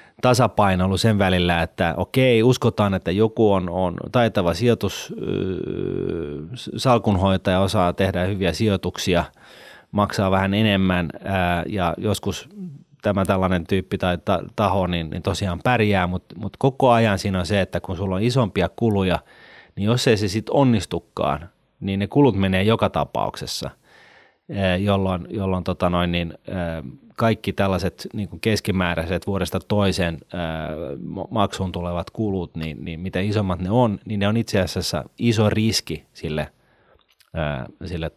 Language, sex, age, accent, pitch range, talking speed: Finnish, male, 30-49, native, 90-105 Hz, 145 wpm